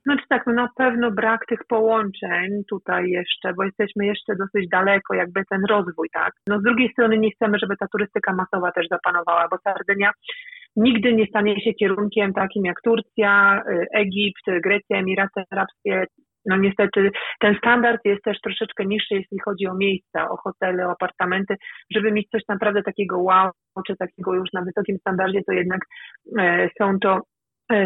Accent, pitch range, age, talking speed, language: native, 185-215 Hz, 30-49, 170 wpm, Polish